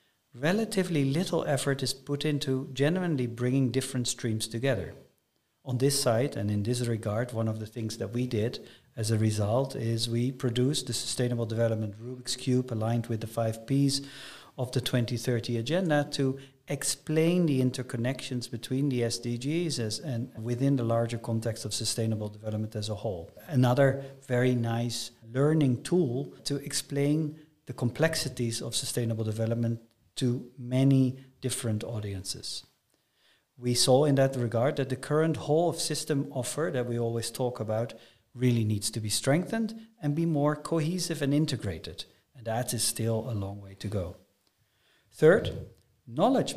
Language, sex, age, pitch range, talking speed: English, male, 50-69, 115-140 Hz, 150 wpm